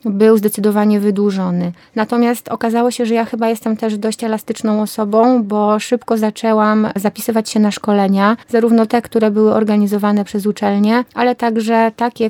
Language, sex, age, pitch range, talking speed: Polish, female, 20-39, 210-225 Hz, 150 wpm